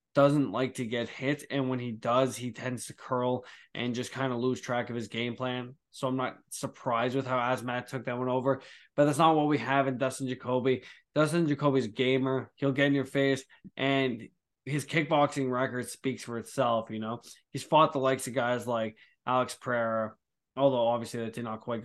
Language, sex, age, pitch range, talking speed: English, male, 20-39, 125-140 Hz, 210 wpm